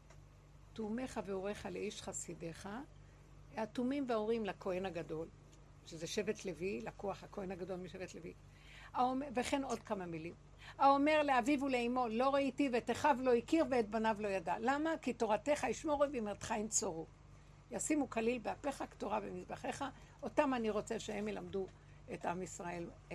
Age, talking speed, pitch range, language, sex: 60-79, 135 wpm, 200-270 Hz, Hebrew, female